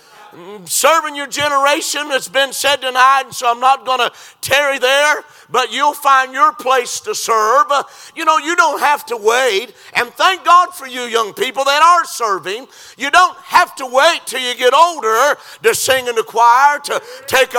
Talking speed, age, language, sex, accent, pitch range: 180 wpm, 50-69, English, male, American, 260-325 Hz